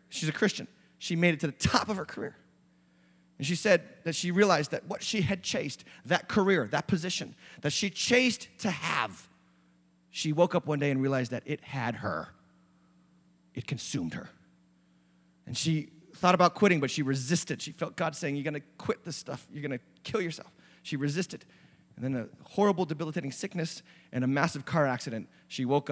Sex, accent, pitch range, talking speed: male, American, 125-180 Hz, 195 wpm